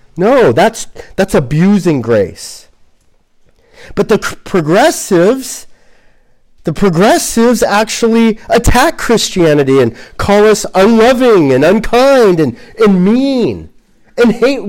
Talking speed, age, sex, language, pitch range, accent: 100 wpm, 40-59, male, English, 165-235 Hz, American